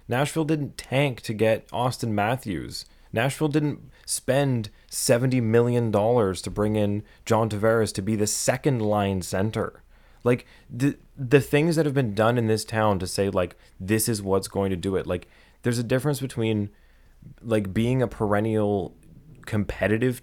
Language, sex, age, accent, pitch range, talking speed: English, male, 20-39, American, 95-125 Hz, 165 wpm